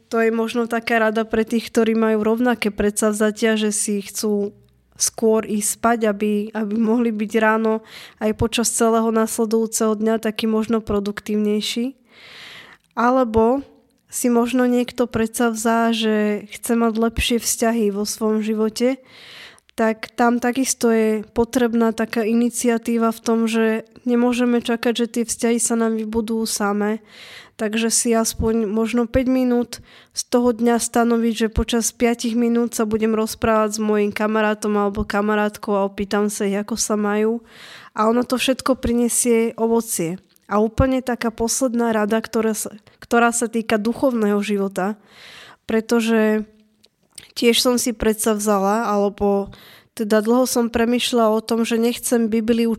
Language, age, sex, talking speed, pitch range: Slovak, 10-29, female, 140 wpm, 215-235 Hz